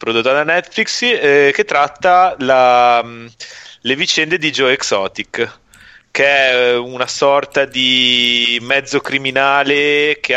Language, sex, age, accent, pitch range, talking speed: Italian, male, 30-49, native, 105-130 Hz, 115 wpm